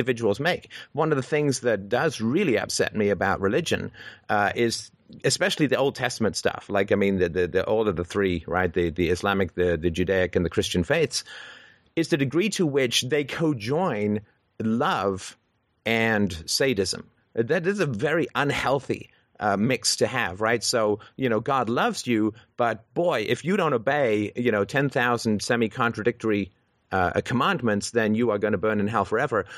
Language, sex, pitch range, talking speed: English, male, 105-140 Hz, 185 wpm